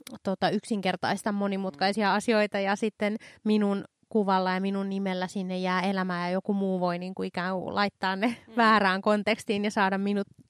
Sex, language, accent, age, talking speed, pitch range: female, Finnish, native, 20-39, 165 wpm, 190-240 Hz